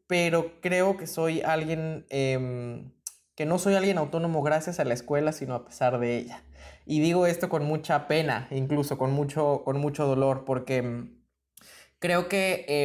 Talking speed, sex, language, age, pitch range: 170 wpm, male, Spanish, 20-39, 135-160 Hz